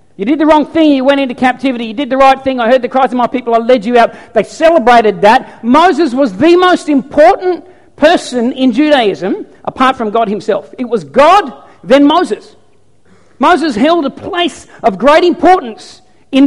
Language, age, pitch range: English, 50-69, 255-330 Hz